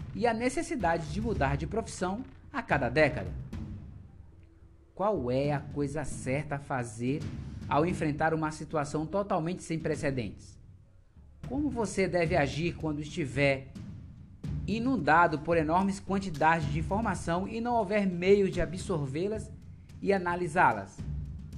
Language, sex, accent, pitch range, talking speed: Portuguese, male, Brazilian, 125-195 Hz, 120 wpm